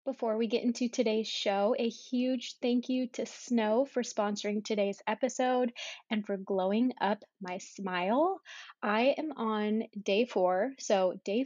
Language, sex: English, female